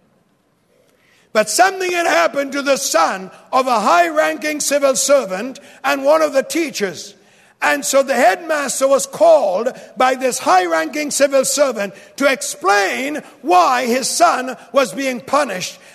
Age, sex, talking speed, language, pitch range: 60-79, male, 135 wpm, English, 200-285 Hz